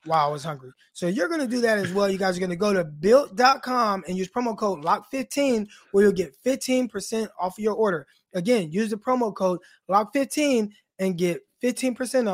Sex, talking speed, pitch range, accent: male, 200 wpm, 195-250 Hz, American